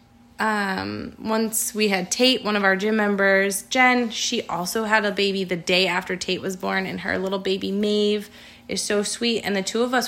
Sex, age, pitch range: female, 20-39, 180-210 Hz